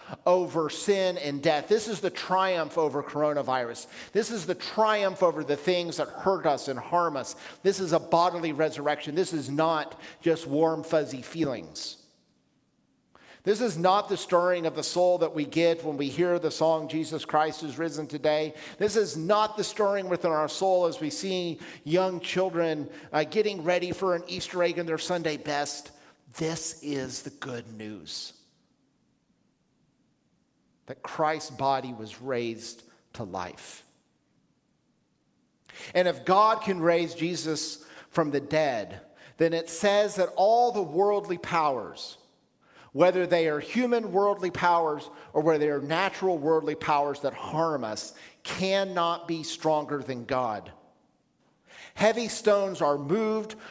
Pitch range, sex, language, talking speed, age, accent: 150-185 Hz, male, English, 150 wpm, 50-69, American